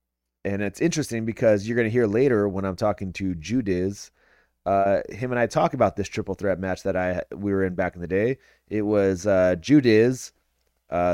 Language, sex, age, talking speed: English, male, 30-49, 205 wpm